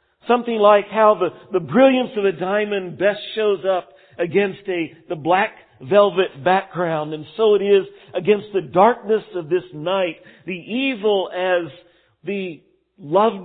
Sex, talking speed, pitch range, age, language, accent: male, 145 wpm, 160-210 Hz, 50-69, English, American